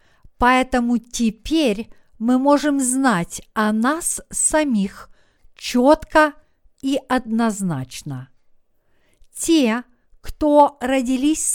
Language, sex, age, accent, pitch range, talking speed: Russian, female, 50-69, native, 220-290 Hz, 75 wpm